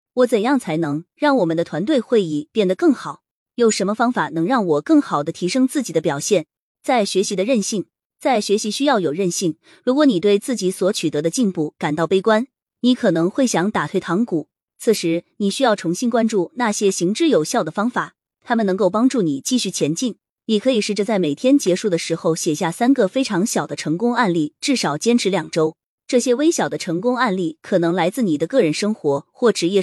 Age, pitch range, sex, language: 20-39, 170-245 Hz, female, Chinese